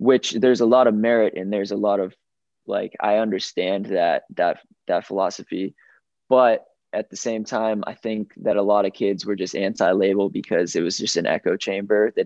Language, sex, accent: English, male, American